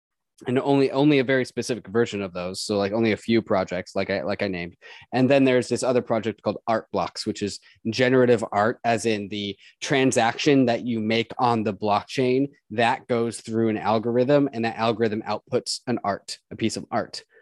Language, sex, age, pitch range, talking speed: English, male, 20-39, 105-125 Hz, 200 wpm